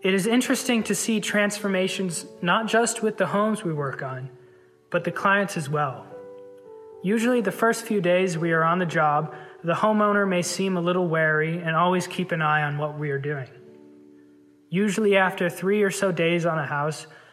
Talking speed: 190 wpm